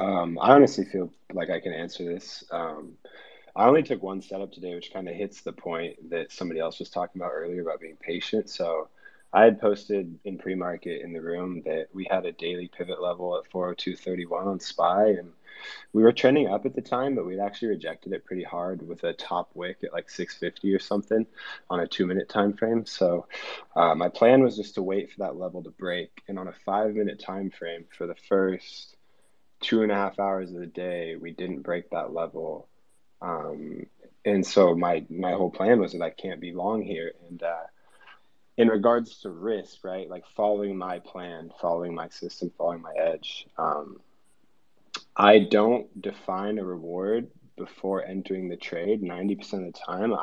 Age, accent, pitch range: 20-39, American, 85-100 Hz